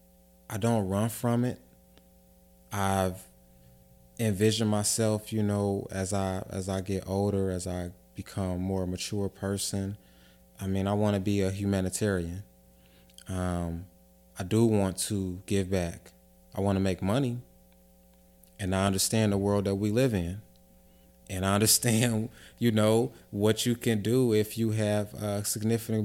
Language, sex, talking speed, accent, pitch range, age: English, male, 150 wpm, American, 85-110 Hz, 20-39